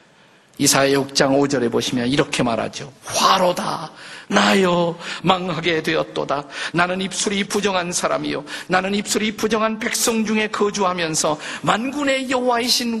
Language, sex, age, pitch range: Korean, male, 50-69, 135-185 Hz